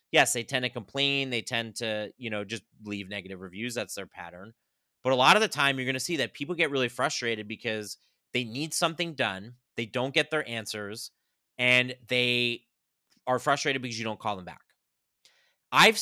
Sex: male